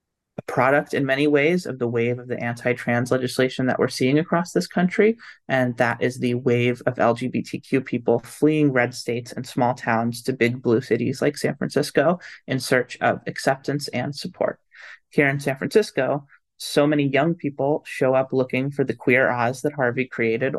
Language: English